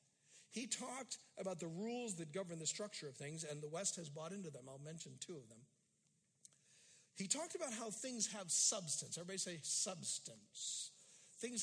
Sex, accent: male, American